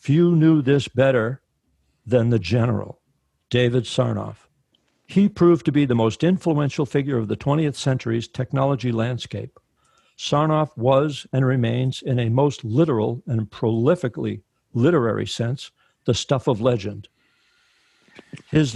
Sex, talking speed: male, 130 wpm